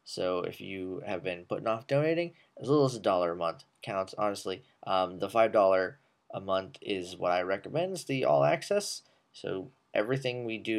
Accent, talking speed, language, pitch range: American, 190 wpm, English, 95-135 Hz